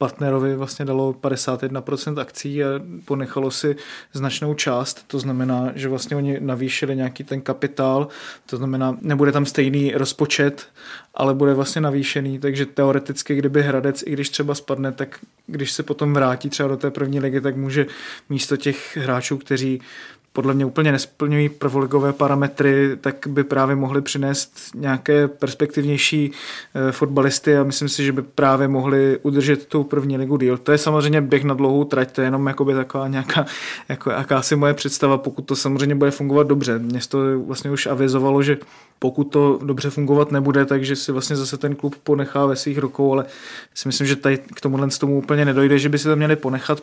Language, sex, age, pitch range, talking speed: Czech, male, 20-39, 135-145 Hz, 175 wpm